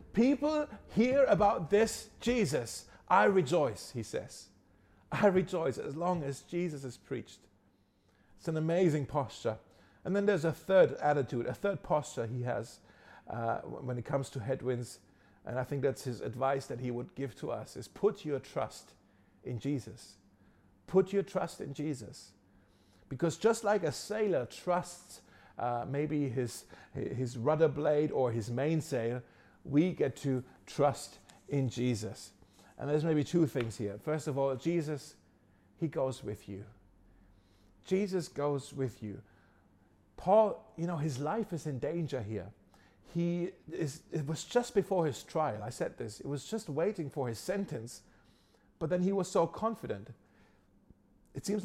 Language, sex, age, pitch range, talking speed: German, male, 50-69, 105-170 Hz, 155 wpm